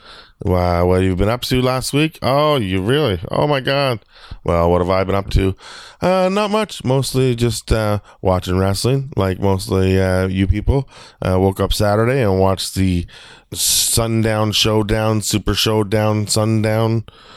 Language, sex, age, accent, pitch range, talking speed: English, male, 20-39, American, 90-110 Hz, 165 wpm